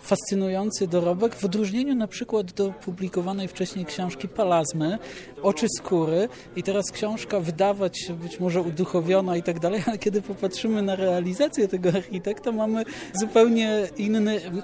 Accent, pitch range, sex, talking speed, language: native, 170-195 Hz, male, 135 wpm, Polish